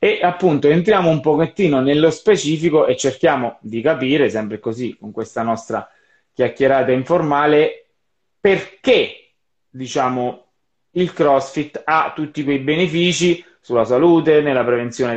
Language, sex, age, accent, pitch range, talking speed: Italian, male, 20-39, native, 120-165 Hz, 120 wpm